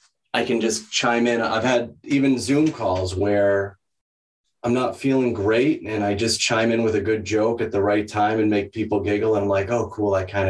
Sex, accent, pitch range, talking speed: male, American, 95-120 Hz, 225 wpm